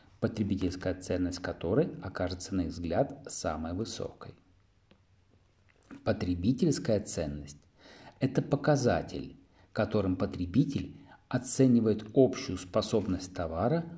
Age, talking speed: 40-59, 80 wpm